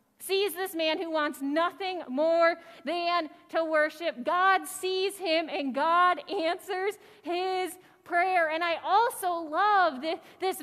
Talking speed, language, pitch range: 130 wpm, English, 295-365 Hz